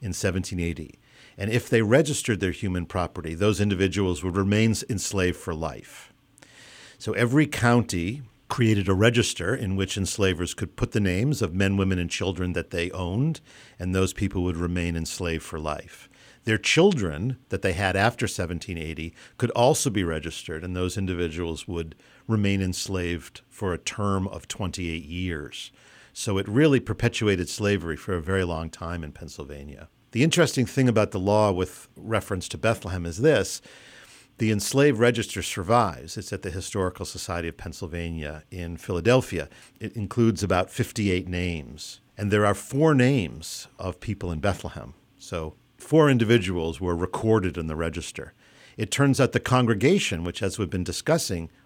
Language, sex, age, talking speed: English, male, 50-69, 160 wpm